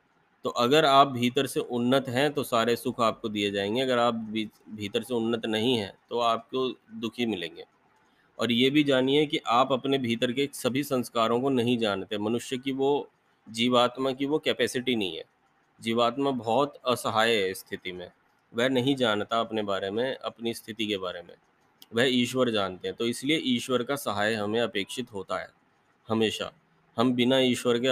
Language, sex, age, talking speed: Hindi, male, 30-49, 175 wpm